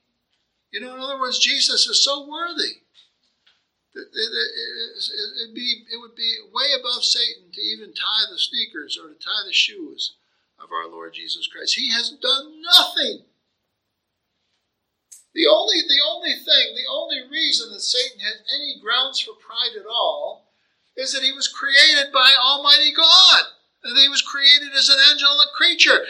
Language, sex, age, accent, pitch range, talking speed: English, male, 50-69, American, 270-350 Hz, 155 wpm